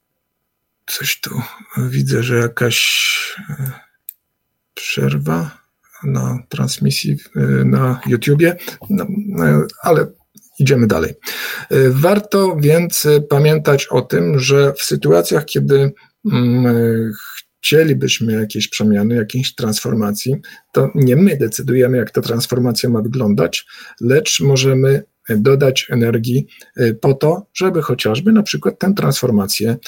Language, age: Polish, 50-69